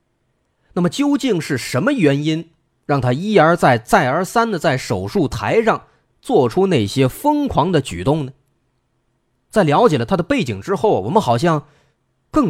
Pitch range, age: 115-155 Hz, 30-49